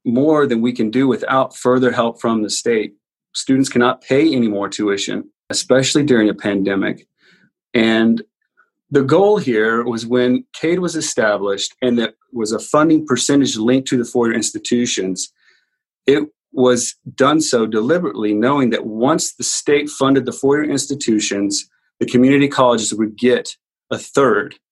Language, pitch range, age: English, 110-130 Hz, 30-49